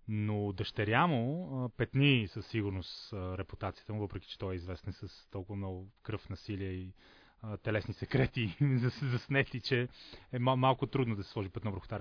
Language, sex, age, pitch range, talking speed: Bulgarian, male, 30-49, 105-130 Hz, 170 wpm